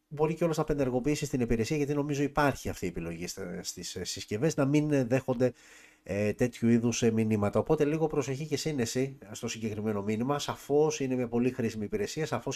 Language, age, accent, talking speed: Greek, 30-49, native, 170 wpm